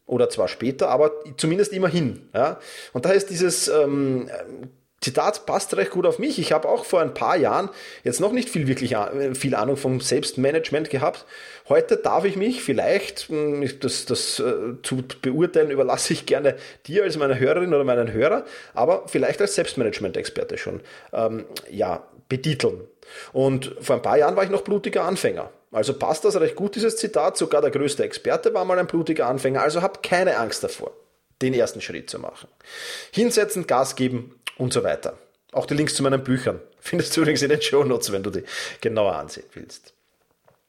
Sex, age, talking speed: male, 30-49, 180 wpm